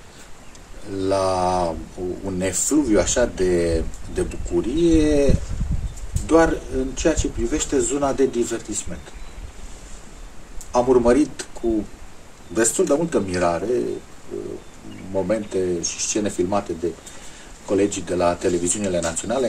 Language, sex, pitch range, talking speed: Romanian, male, 90-120 Hz, 100 wpm